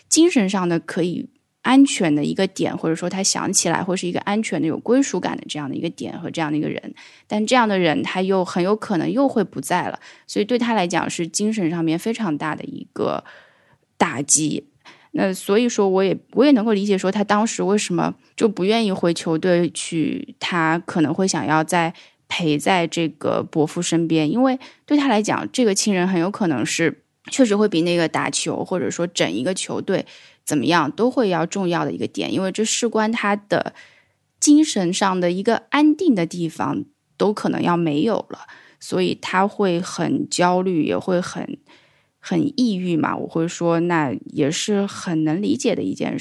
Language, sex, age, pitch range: Chinese, female, 10-29, 170-225 Hz